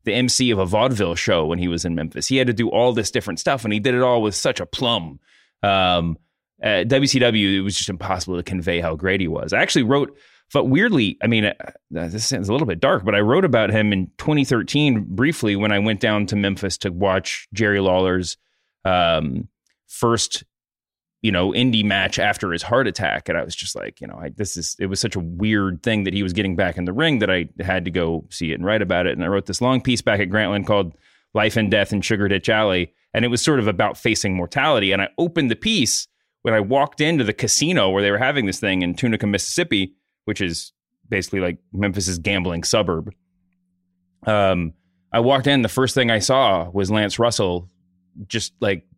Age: 30-49